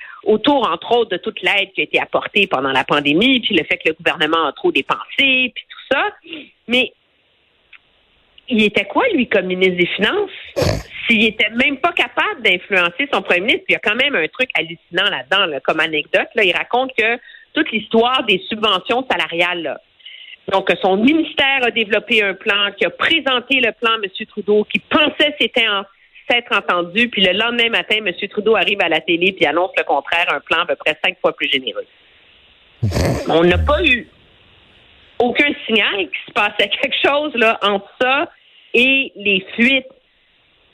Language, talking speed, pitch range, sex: French, 180 wpm, 180-265 Hz, female